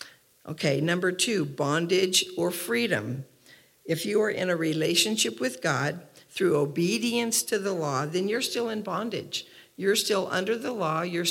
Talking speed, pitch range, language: 160 wpm, 165-210 Hz, English